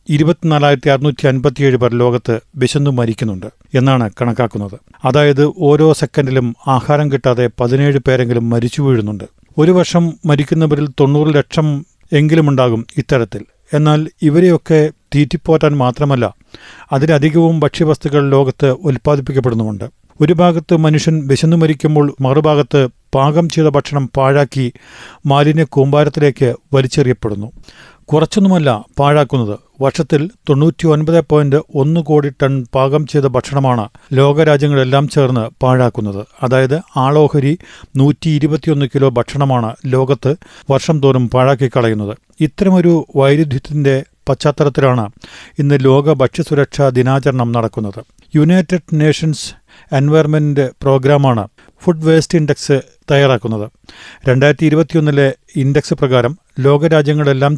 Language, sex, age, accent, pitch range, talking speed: Malayalam, male, 40-59, native, 130-155 Hz, 95 wpm